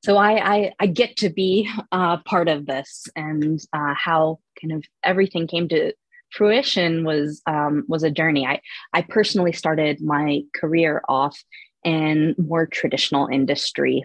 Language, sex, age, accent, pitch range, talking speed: English, female, 20-39, American, 150-185 Hz, 155 wpm